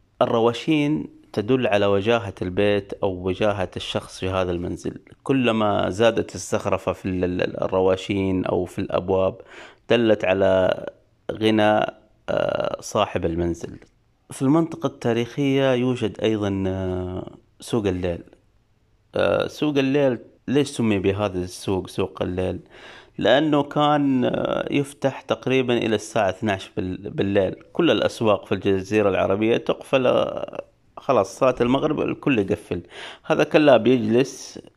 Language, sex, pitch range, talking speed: Arabic, male, 95-120 Hz, 105 wpm